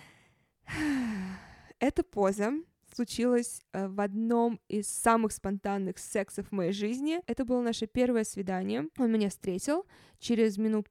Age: 20-39